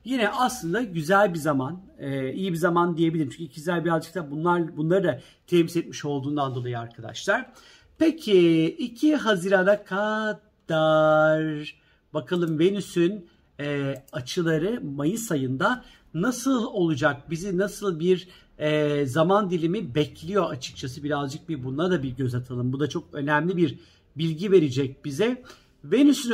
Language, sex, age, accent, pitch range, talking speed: Turkish, male, 50-69, native, 155-205 Hz, 130 wpm